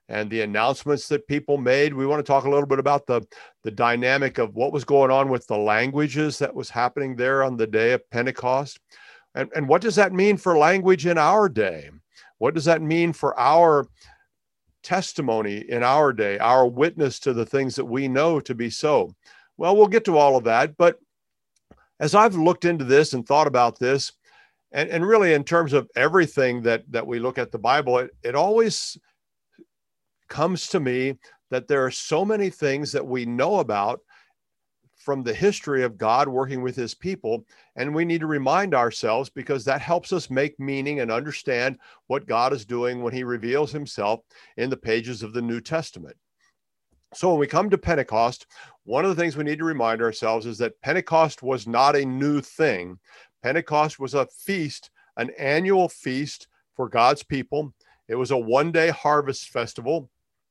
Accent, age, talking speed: American, 50-69, 190 wpm